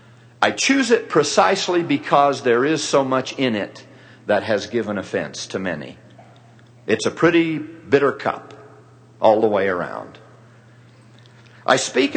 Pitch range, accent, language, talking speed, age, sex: 115-155 Hz, American, English, 140 wpm, 50-69, male